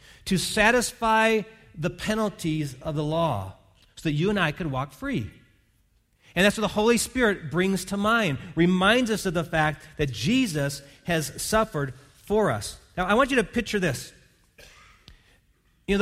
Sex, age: male, 40-59